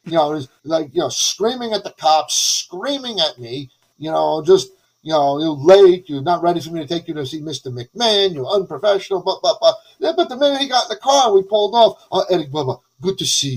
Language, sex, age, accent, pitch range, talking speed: English, male, 30-49, American, 140-195 Hz, 250 wpm